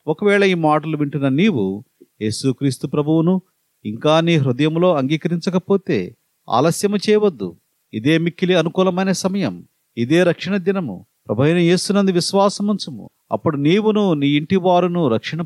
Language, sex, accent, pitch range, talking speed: Telugu, male, native, 140-185 Hz, 115 wpm